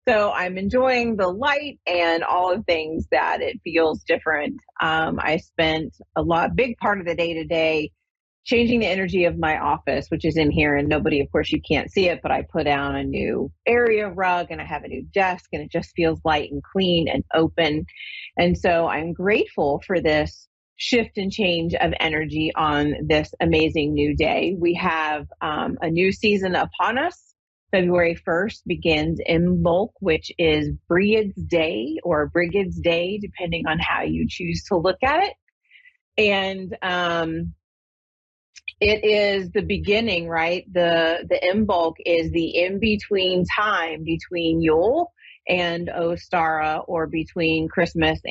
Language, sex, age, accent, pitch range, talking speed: English, female, 30-49, American, 160-195 Hz, 165 wpm